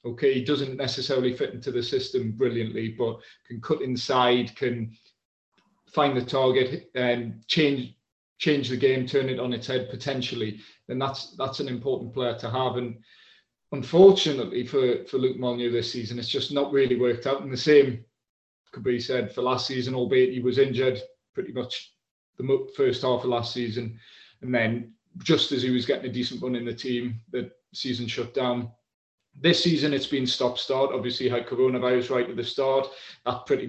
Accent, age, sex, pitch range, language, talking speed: British, 30-49, male, 125-140 Hz, English, 180 wpm